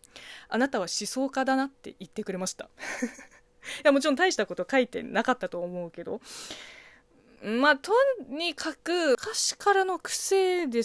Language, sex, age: Japanese, female, 20-39